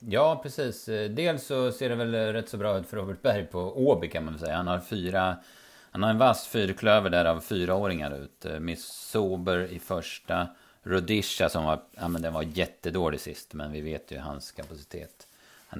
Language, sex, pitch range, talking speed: Swedish, male, 85-105 Hz, 200 wpm